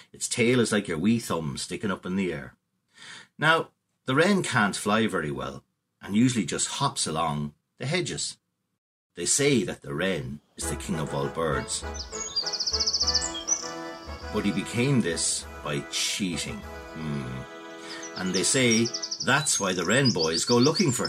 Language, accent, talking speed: English, Irish, 155 wpm